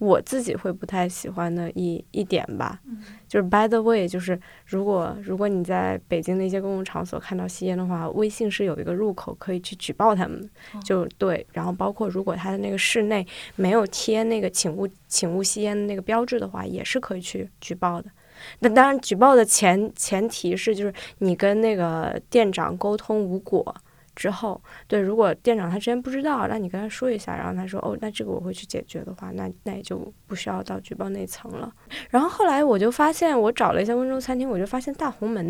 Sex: female